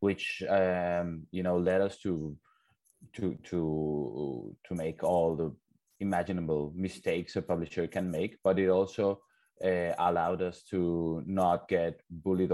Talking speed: 140 wpm